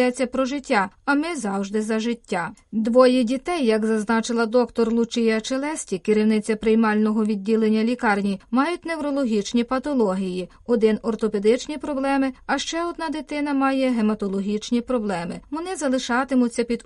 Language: Ukrainian